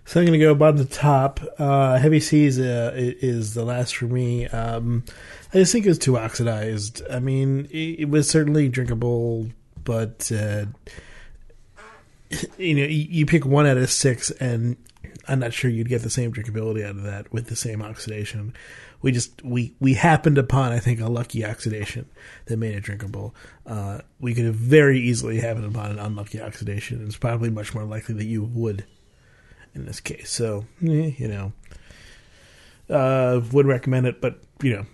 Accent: American